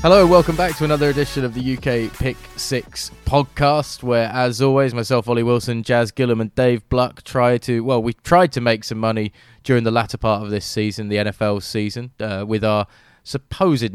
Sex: male